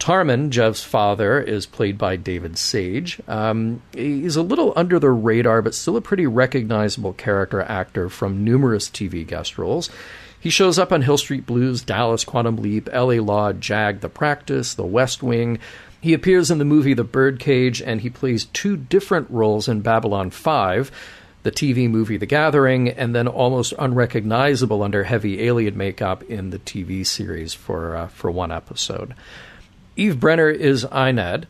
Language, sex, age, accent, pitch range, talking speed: English, male, 40-59, American, 105-140 Hz, 165 wpm